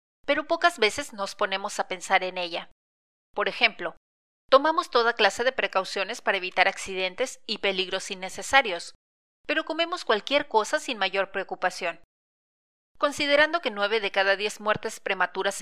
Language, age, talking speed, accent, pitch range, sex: Spanish, 30-49, 140 wpm, Mexican, 190-250 Hz, female